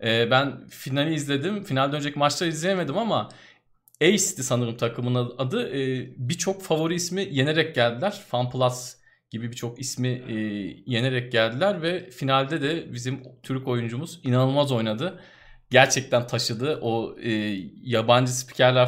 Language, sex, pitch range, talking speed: Turkish, male, 120-145 Hz, 120 wpm